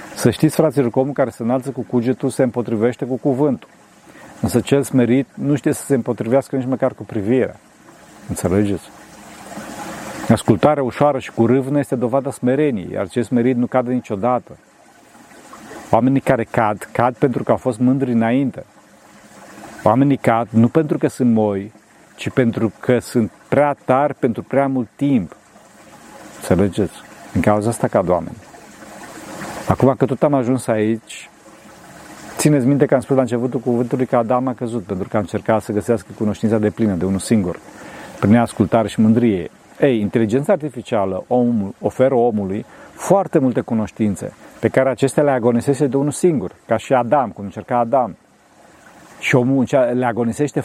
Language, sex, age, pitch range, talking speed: Romanian, male, 40-59, 115-135 Hz, 160 wpm